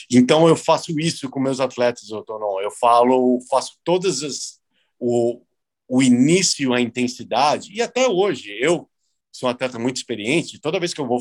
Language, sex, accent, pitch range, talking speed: Portuguese, male, Brazilian, 115-130 Hz, 170 wpm